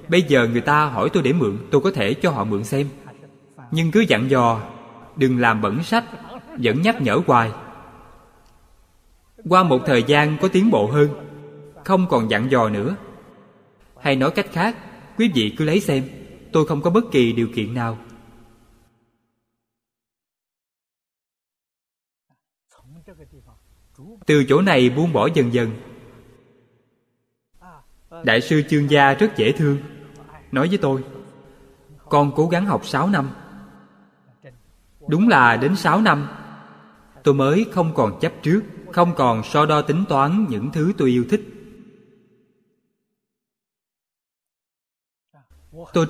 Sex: male